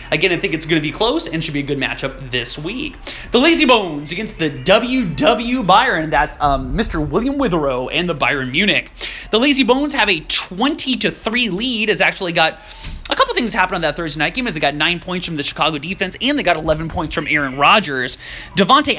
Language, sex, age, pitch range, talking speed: English, male, 30-49, 155-235 Hz, 225 wpm